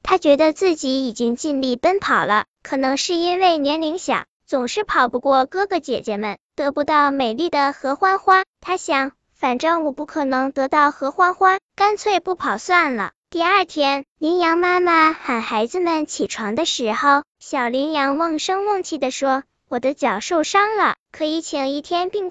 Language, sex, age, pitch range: Chinese, male, 10-29, 270-355 Hz